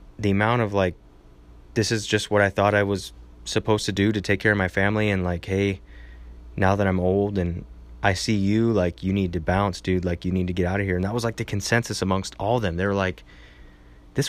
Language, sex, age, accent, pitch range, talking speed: English, male, 20-39, American, 80-105 Hz, 250 wpm